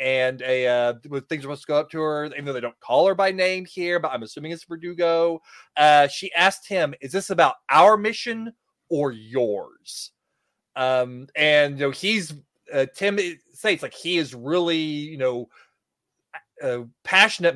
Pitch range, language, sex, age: 140-180 Hz, English, male, 30-49